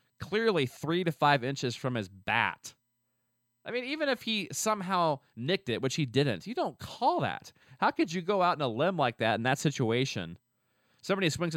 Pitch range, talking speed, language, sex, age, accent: 115-160 Hz, 195 wpm, English, male, 30-49, American